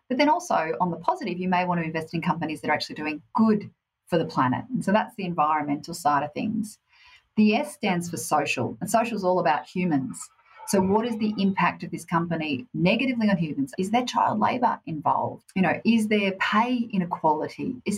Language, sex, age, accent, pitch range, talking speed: English, female, 40-59, Australian, 155-220 Hz, 210 wpm